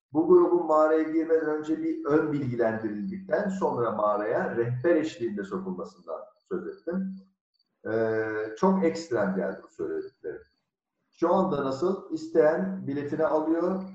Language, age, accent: Turkish, 50-69, native